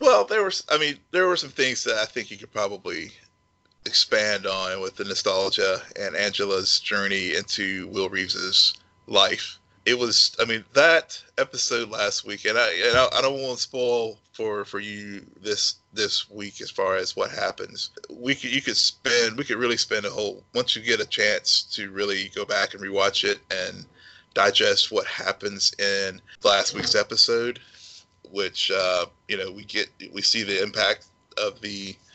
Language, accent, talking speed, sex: English, American, 170 wpm, male